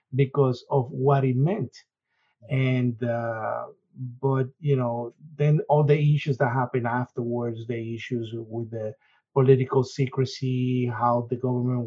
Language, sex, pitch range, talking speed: English, male, 120-135 Hz, 130 wpm